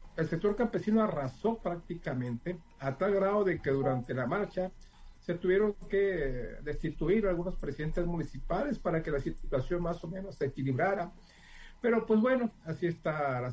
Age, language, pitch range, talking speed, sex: 50-69, Spanish, 125-170 Hz, 155 wpm, male